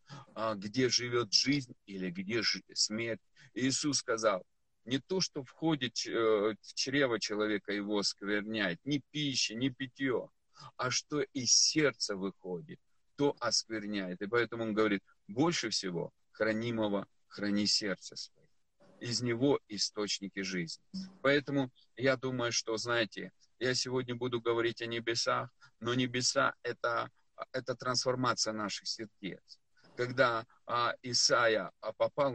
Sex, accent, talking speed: male, native, 115 wpm